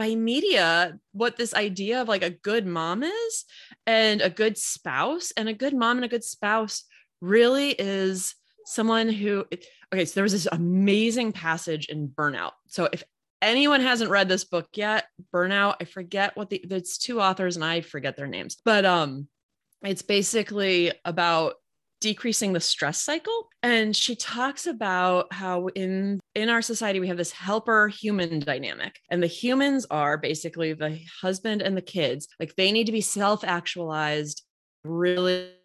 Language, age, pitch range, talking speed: English, 20-39, 170-220 Hz, 165 wpm